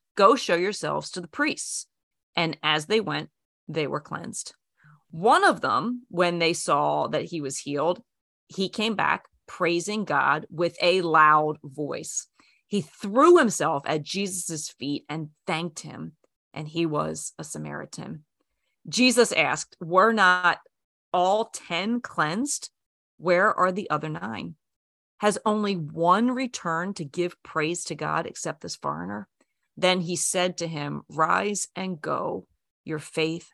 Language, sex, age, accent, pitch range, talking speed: English, female, 30-49, American, 155-200 Hz, 145 wpm